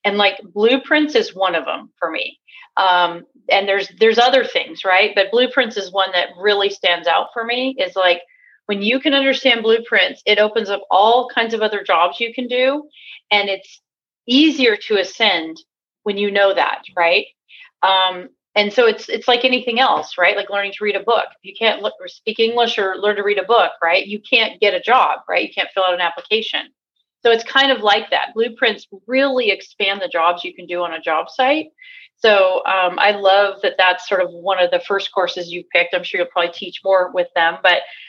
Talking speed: 215 wpm